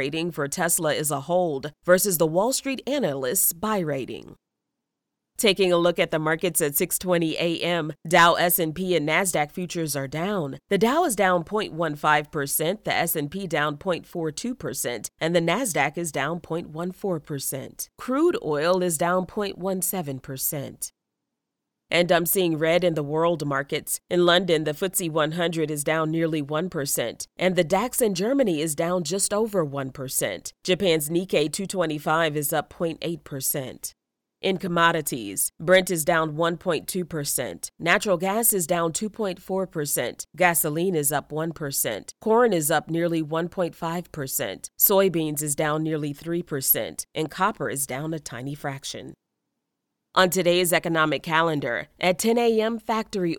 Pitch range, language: 155-185 Hz, English